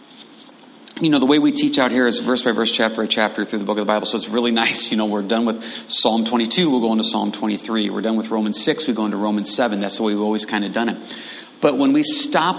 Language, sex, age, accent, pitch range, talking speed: English, male, 40-59, American, 110-145 Hz, 285 wpm